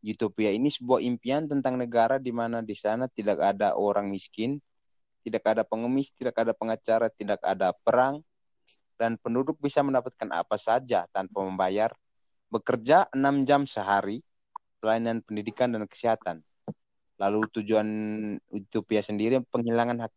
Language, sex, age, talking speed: Indonesian, male, 30-49, 135 wpm